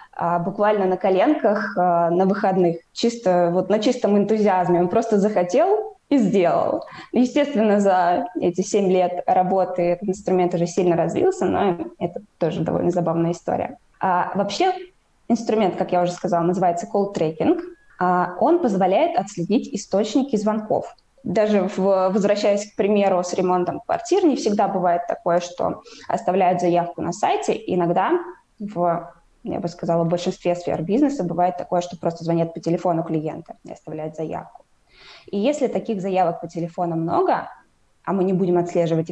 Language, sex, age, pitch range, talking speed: Russian, female, 20-39, 175-215 Hz, 145 wpm